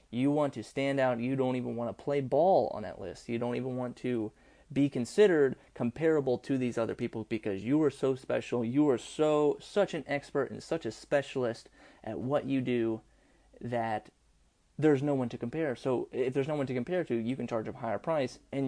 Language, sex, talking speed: English, male, 215 wpm